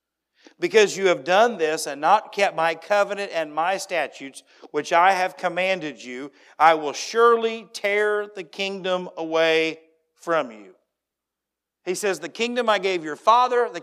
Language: English